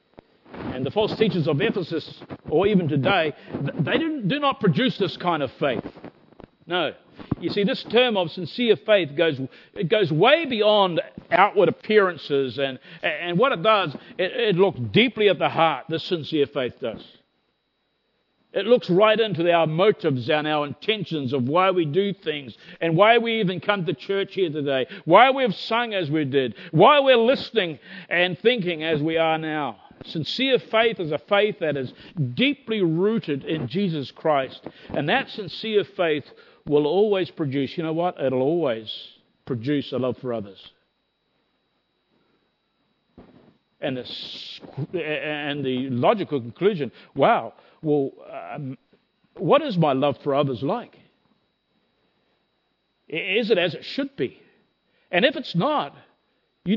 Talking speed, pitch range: 150 wpm, 145-205 Hz